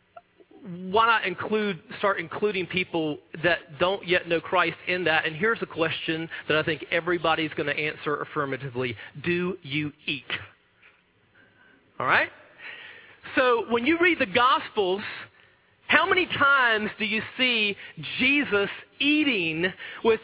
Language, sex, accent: English, male, American